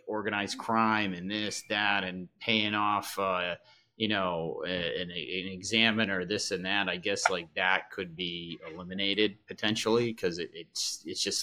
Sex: male